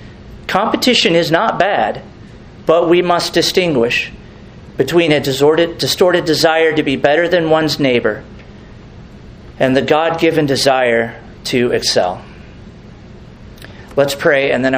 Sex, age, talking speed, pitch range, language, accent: male, 40-59, 115 wpm, 120-160 Hz, English, American